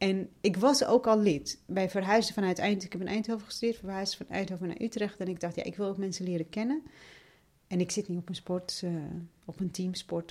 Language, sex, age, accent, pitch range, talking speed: Dutch, female, 40-59, Dutch, 165-205 Hz, 240 wpm